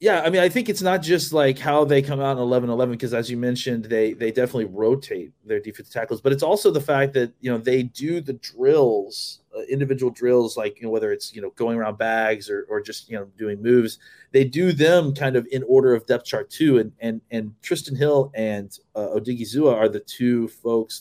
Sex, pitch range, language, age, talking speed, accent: male, 115-140 Hz, English, 30-49, 235 wpm, American